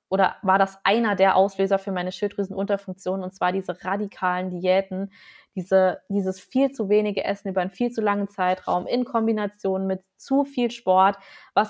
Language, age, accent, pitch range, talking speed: German, 20-39, German, 190-215 Hz, 165 wpm